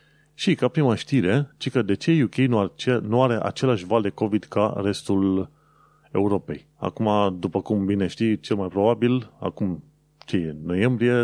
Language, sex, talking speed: Romanian, male, 160 wpm